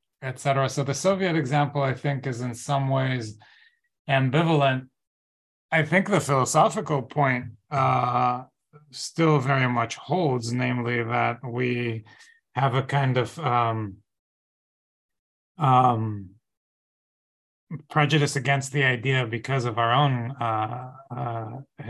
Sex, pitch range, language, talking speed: male, 125-145 Hz, English, 110 wpm